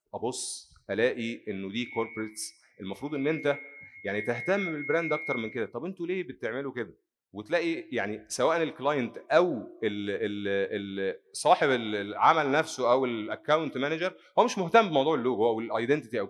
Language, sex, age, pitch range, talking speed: English, male, 30-49, 110-165 Hz, 145 wpm